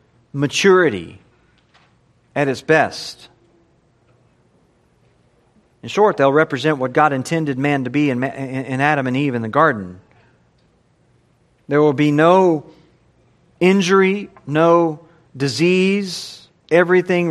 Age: 40-59